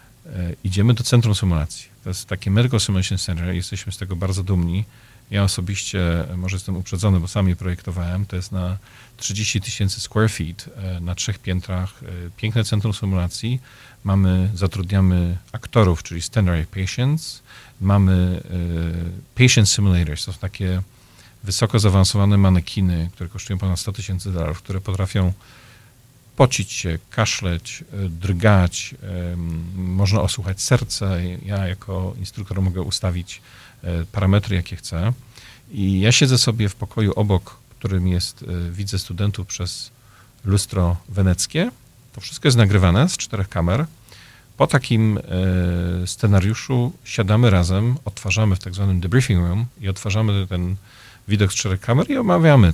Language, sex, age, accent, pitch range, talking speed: Polish, male, 40-59, native, 90-115 Hz, 135 wpm